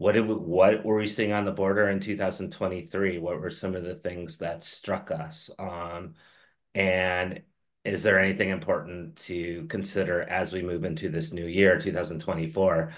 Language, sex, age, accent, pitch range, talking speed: English, male, 30-49, American, 90-105 Hz, 170 wpm